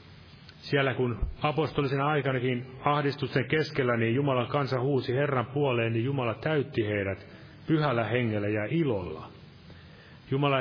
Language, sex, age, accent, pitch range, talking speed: Finnish, male, 30-49, native, 115-140 Hz, 120 wpm